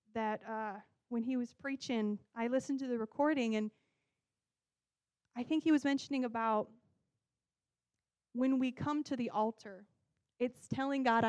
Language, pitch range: English, 215-255 Hz